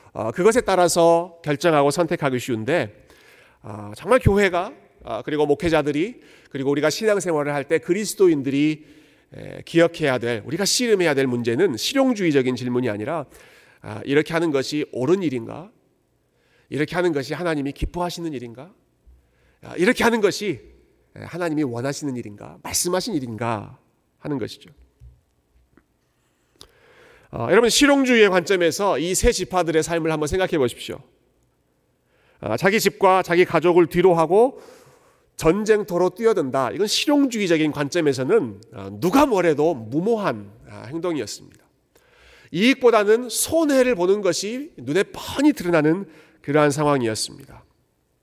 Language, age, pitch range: Korean, 40-59, 135-195 Hz